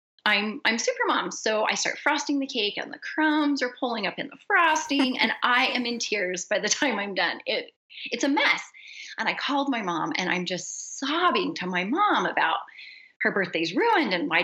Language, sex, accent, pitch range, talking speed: English, female, American, 215-305 Hz, 210 wpm